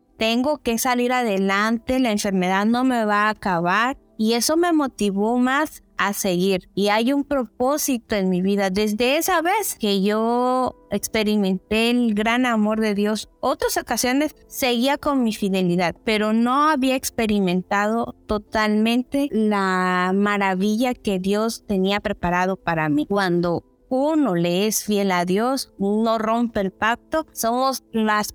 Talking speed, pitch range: 145 wpm, 200-235 Hz